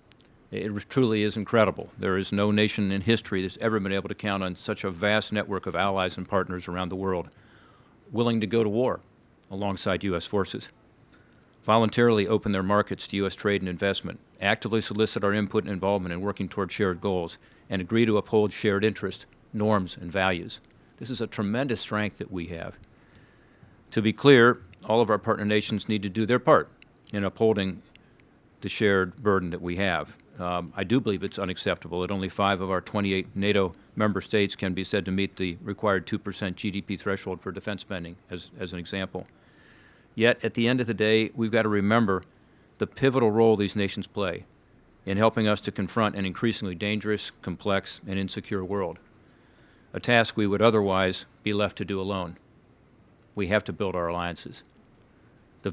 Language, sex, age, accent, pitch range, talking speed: English, male, 50-69, American, 95-110 Hz, 190 wpm